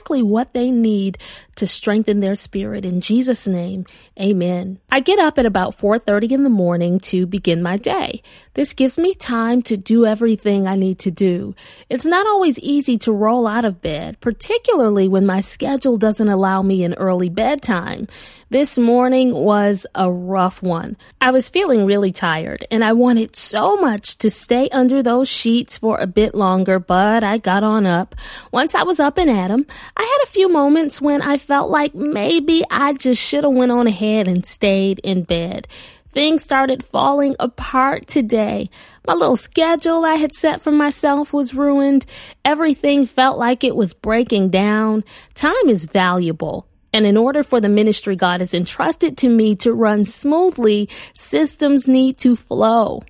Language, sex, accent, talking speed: English, female, American, 175 wpm